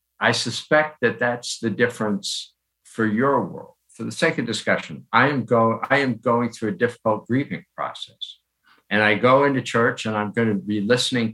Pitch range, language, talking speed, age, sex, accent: 90-120 Hz, English, 190 wpm, 60-79, male, American